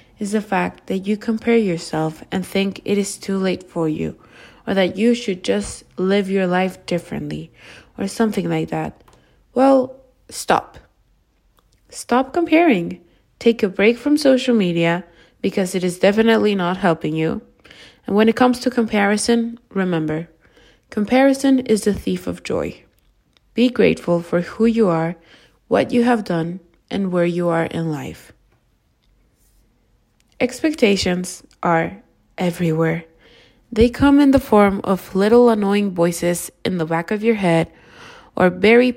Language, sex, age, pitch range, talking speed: English, female, 20-39, 165-225 Hz, 145 wpm